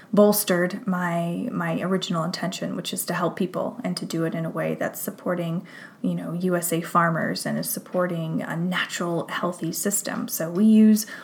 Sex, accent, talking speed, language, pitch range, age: female, American, 175 wpm, English, 175-215 Hz, 20-39